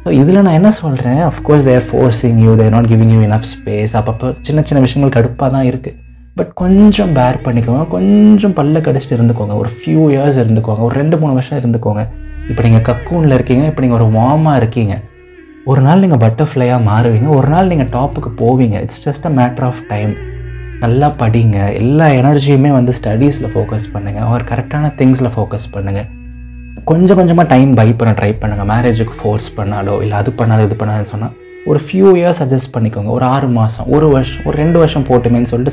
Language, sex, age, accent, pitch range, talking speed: Tamil, male, 20-39, native, 110-150 Hz, 180 wpm